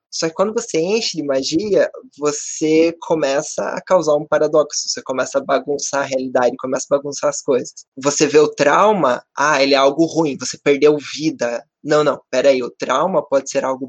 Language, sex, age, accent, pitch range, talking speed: Portuguese, male, 20-39, Brazilian, 135-165 Hz, 190 wpm